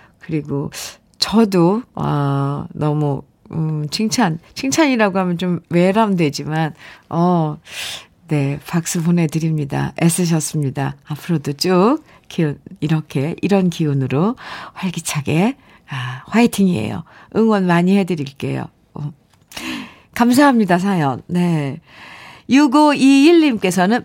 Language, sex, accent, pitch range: Korean, female, native, 170-270 Hz